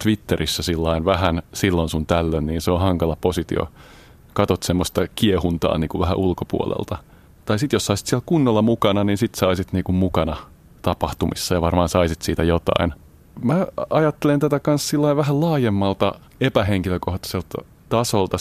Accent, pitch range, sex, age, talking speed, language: native, 85-100 Hz, male, 30-49, 145 wpm, Finnish